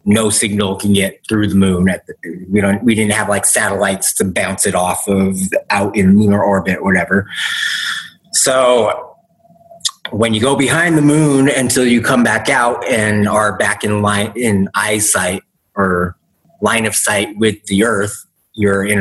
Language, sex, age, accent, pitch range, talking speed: English, male, 30-49, American, 100-120 Hz, 175 wpm